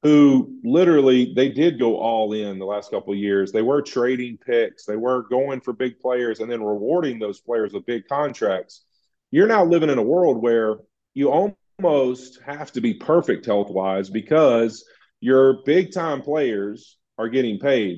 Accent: American